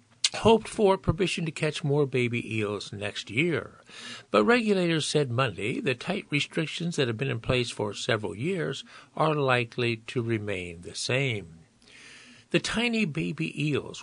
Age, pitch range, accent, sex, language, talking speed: 60-79, 115-160 Hz, American, male, English, 150 wpm